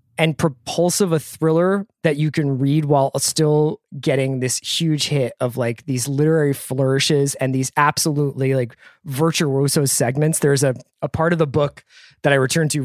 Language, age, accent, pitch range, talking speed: English, 20-39, American, 125-150 Hz, 170 wpm